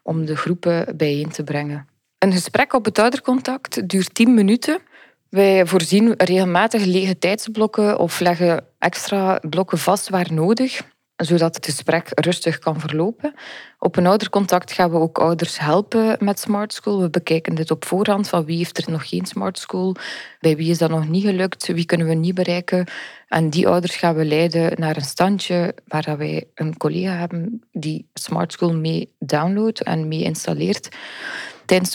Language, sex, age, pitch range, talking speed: English, female, 20-39, 165-205 Hz, 170 wpm